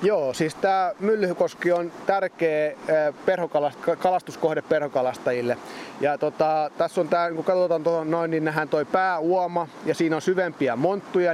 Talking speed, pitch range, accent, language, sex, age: 140 wpm, 150-175 Hz, native, Finnish, male, 30-49